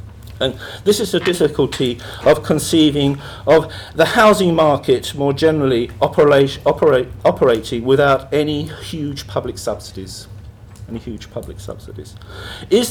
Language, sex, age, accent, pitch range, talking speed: English, male, 50-69, British, 115-165 Hz, 120 wpm